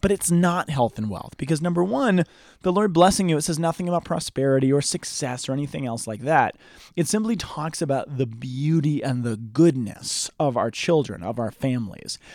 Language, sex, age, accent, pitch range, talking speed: English, male, 30-49, American, 130-175 Hz, 195 wpm